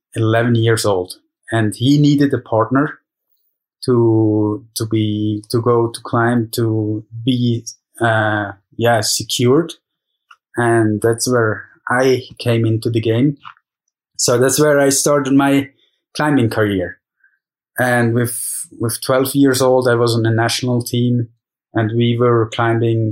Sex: male